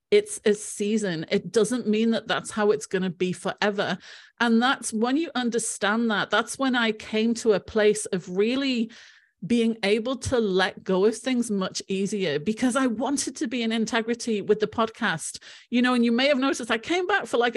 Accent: British